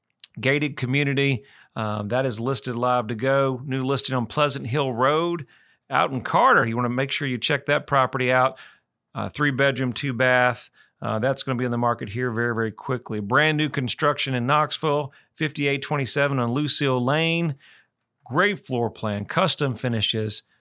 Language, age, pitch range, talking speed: English, 40-59, 125-150 Hz, 160 wpm